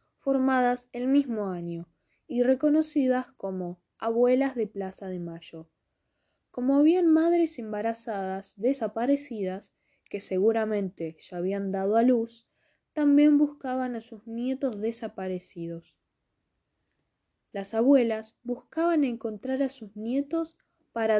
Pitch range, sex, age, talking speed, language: 195-270 Hz, female, 10-29, 110 wpm, Spanish